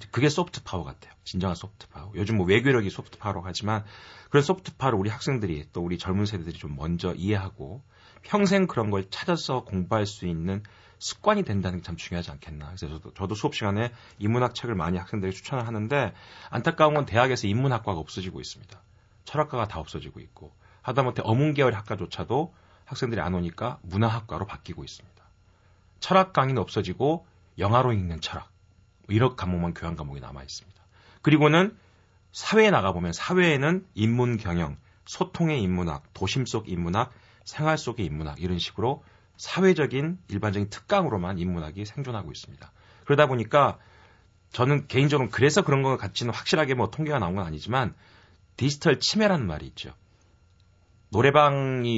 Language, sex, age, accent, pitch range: Korean, male, 40-59, native, 90-130 Hz